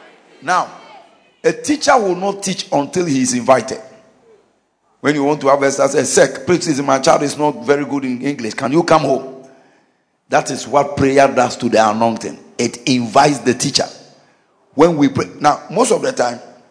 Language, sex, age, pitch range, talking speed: English, male, 50-69, 140-230 Hz, 180 wpm